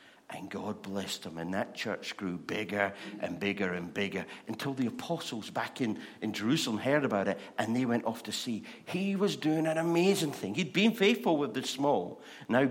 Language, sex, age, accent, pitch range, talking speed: English, male, 60-79, British, 100-145 Hz, 200 wpm